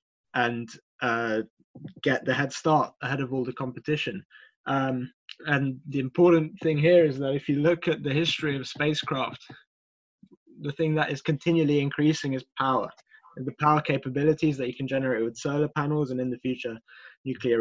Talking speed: 175 wpm